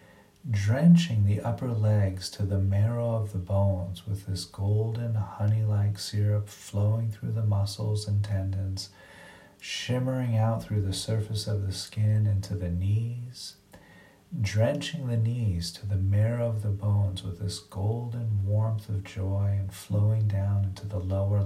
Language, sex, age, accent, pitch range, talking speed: English, male, 40-59, American, 100-110 Hz, 150 wpm